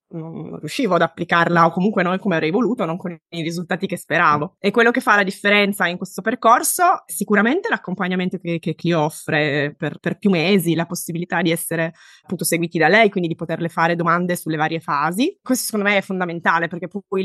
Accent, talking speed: native, 205 wpm